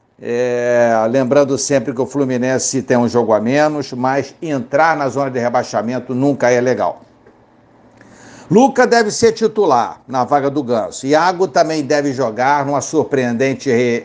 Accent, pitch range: Brazilian, 125-150 Hz